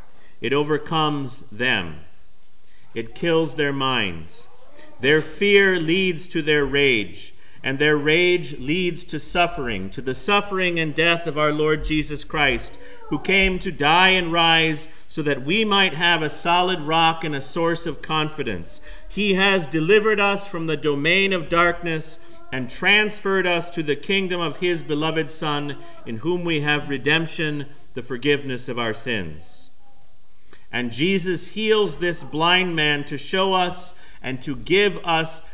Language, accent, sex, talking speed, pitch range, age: English, American, male, 150 wpm, 140-180 Hz, 50-69